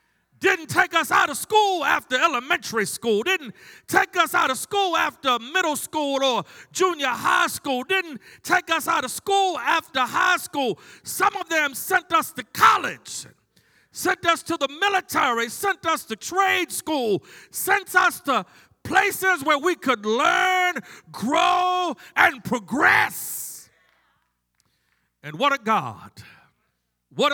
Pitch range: 235-330 Hz